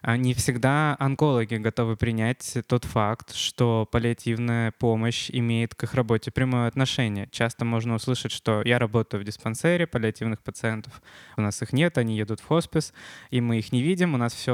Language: Russian